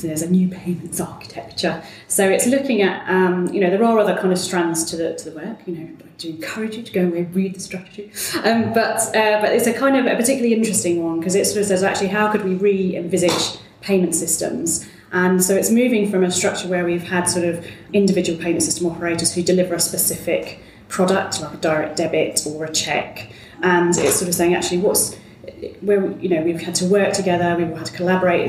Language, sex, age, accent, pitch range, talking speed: English, female, 30-49, British, 170-195 Hz, 225 wpm